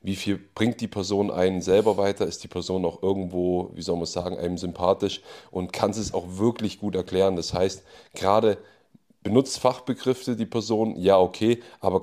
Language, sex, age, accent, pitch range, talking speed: German, male, 30-49, German, 90-105 Hz, 180 wpm